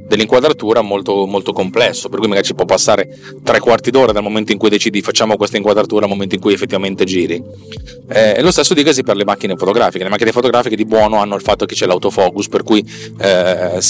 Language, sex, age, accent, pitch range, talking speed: Italian, male, 30-49, native, 95-120 Hz, 220 wpm